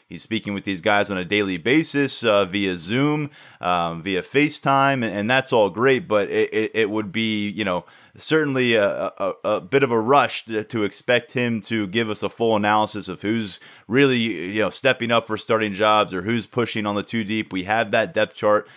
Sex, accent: male, American